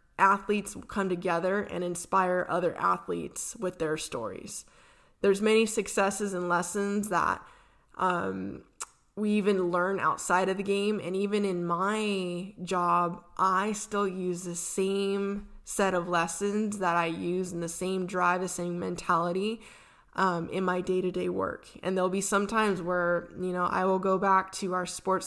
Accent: American